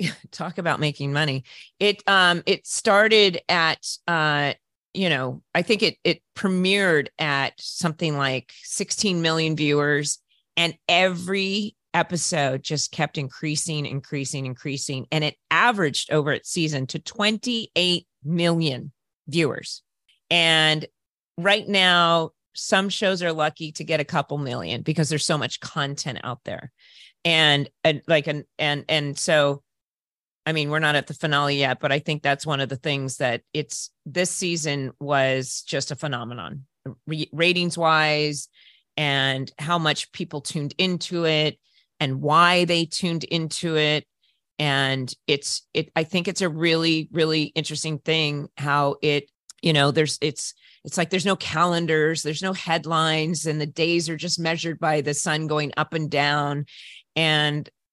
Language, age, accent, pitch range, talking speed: English, 40-59, American, 145-170 Hz, 150 wpm